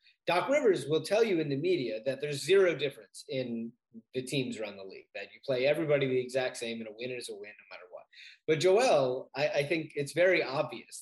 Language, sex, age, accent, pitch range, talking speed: English, male, 30-49, American, 130-165 Hz, 230 wpm